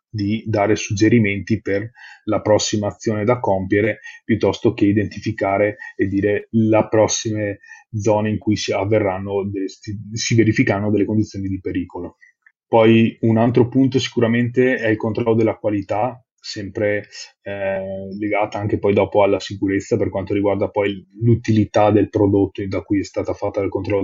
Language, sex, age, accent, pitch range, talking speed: Italian, male, 30-49, native, 105-120 Hz, 145 wpm